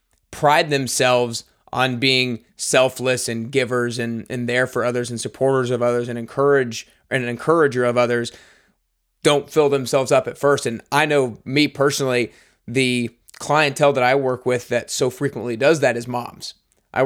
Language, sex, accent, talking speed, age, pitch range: English, male, American, 170 wpm, 20-39, 120-140 Hz